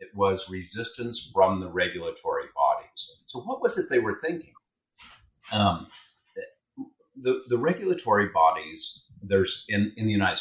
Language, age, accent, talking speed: English, 50-69, American, 140 wpm